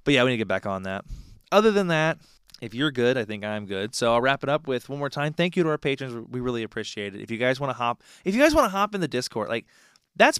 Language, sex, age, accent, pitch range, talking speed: English, male, 20-39, American, 110-150 Hz, 310 wpm